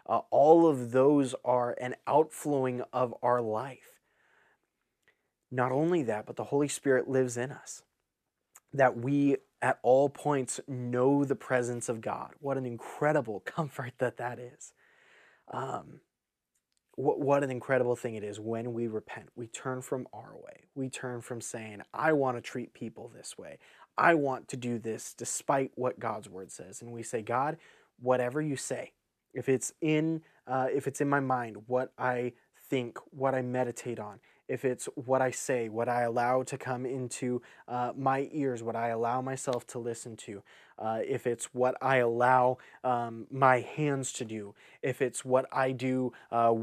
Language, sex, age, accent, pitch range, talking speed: English, male, 20-39, American, 120-135 Hz, 175 wpm